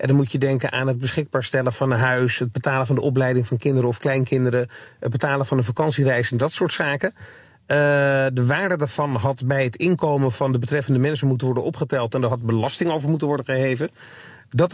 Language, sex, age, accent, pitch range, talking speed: Dutch, male, 40-59, Dutch, 130-155 Hz, 220 wpm